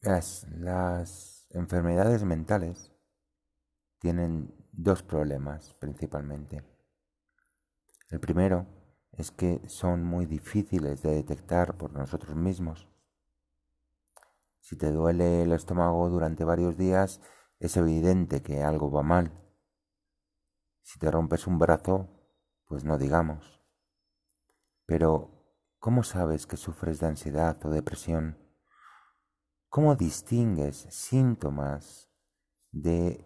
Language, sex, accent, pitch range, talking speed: English, male, Spanish, 75-95 Hz, 100 wpm